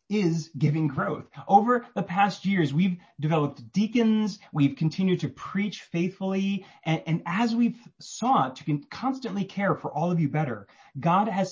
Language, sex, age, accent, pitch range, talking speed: English, male, 30-49, American, 145-200 Hz, 155 wpm